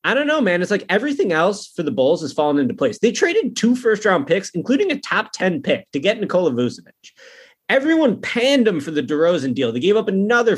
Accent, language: American, English